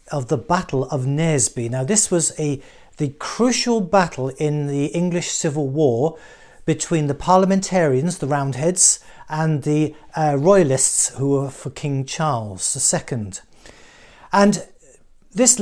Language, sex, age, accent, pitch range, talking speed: English, male, 40-59, British, 140-180 Hz, 130 wpm